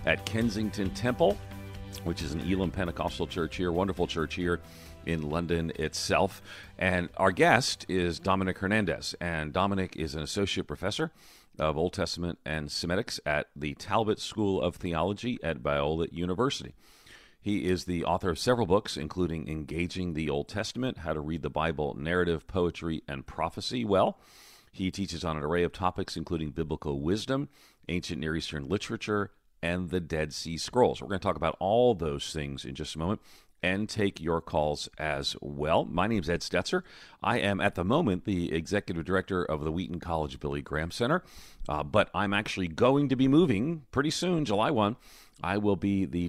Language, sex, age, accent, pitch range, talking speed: English, male, 40-59, American, 80-100 Hz, 180 wpm